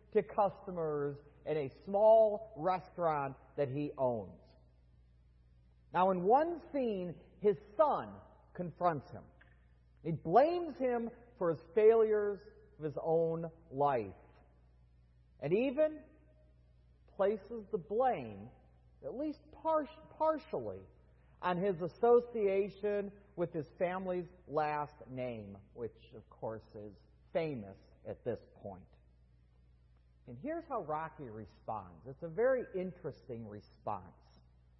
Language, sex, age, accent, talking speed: English, male, 40-59, American, 105 wpm